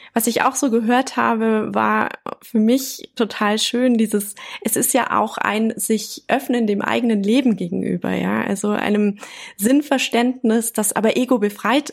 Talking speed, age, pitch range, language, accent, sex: 155 wpm, 20-39, 200-245 Hz, German, German, female